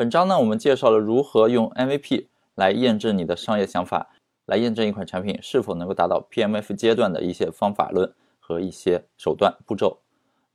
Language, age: Chinese, 20-39